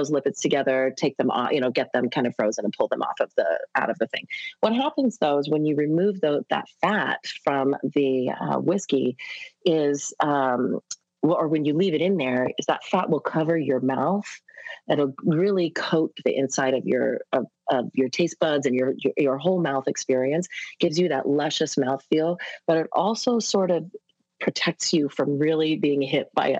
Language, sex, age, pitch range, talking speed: English, female, 30-49, 135-170 Hz, 200 wpm